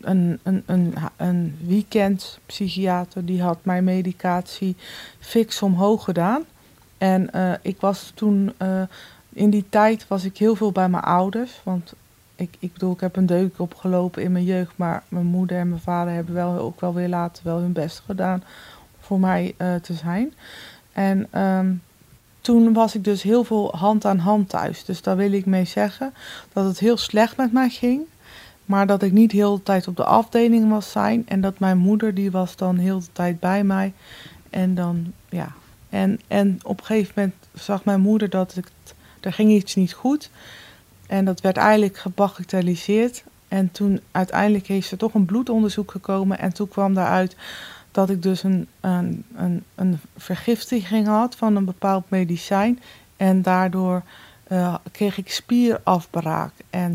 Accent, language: Dutch, Dutch